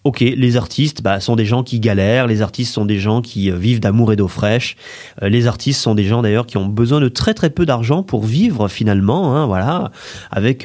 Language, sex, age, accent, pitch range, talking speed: French, male, 30-49, French, 110-150 Hz, 225 wpm